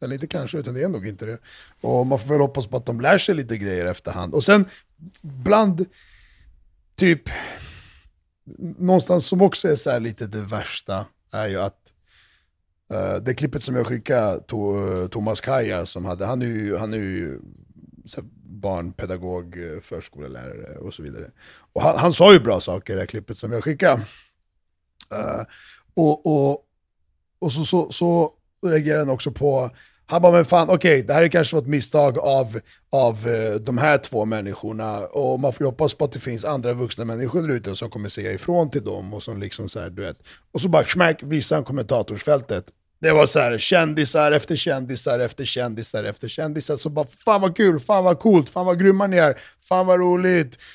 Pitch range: 105-160 Hz